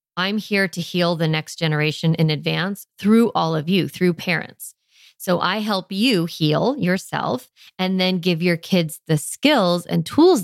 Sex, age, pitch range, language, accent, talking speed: female, 30-49, 160-200 Hz, English, American, 170 wpm